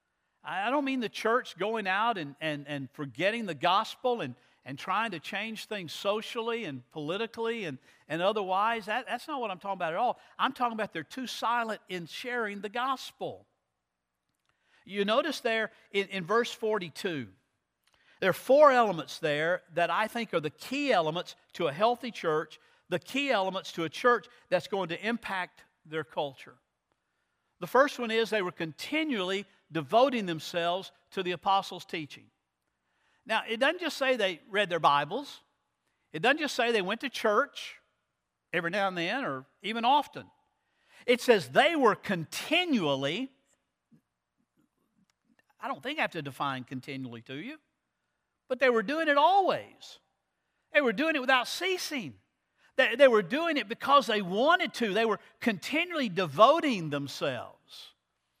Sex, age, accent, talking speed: male, 50-69, American, 160 wpm